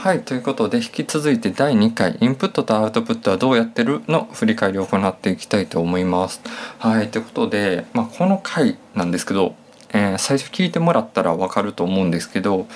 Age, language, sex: 20-39, Japanese, male